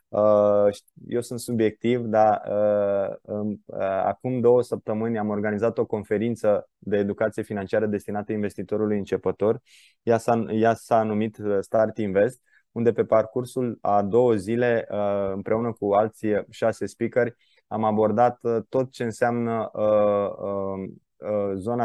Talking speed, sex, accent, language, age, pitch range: 110 wpm, male, native, Romanian, 20-39, 105-115 Hz